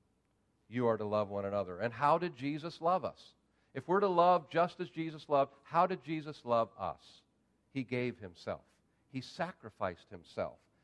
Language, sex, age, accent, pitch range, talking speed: English, male, 50-69, American, 130-185 Hz, 170 wpm